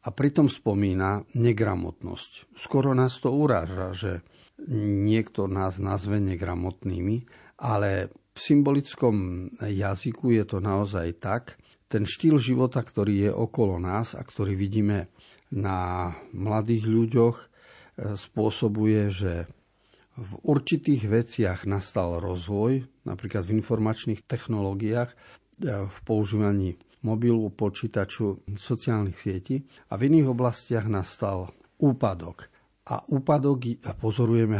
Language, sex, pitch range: Slovak, male, 95-120 Hz